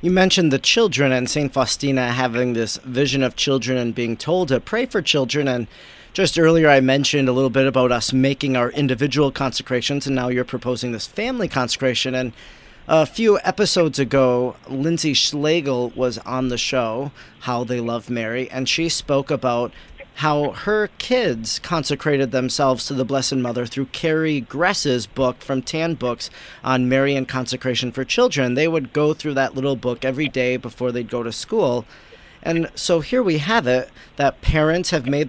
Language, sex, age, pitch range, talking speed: English, male, 40-59, 125-155 Hz, 175 wpm